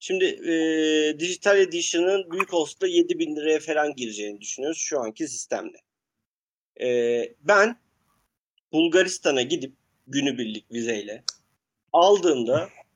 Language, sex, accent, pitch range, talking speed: Turkish, male, native, 140-205 Hz, 100 wpm